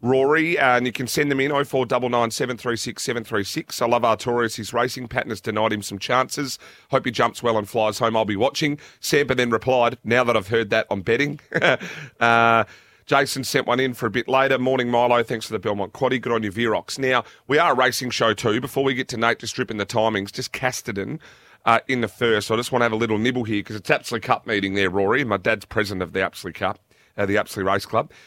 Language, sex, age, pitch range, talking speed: English, male, 30-49, 115-135 Hz, 240 wpm